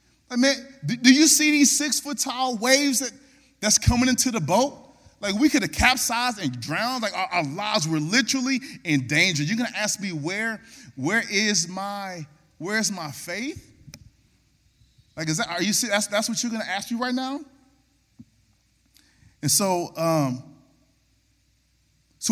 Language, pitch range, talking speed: English, 150-245 Hz, 165 wpm